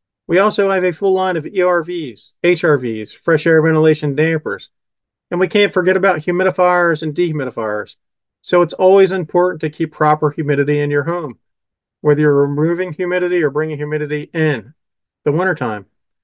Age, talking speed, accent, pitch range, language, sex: 40-59, 155 wpm, American, 145-180 Hz, English, male